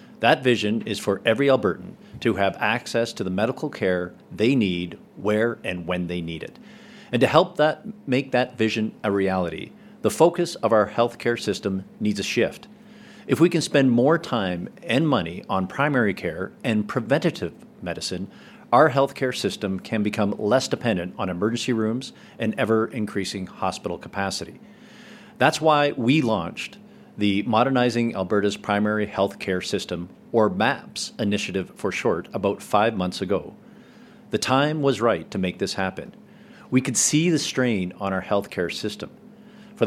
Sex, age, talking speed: male, 40-59, 160 wpm